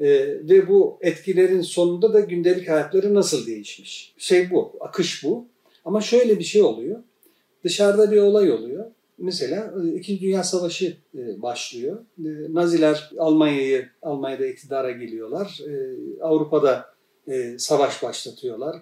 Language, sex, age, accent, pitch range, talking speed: Turkish, male, 50-69, native, 135-210 Hz, 110 wpm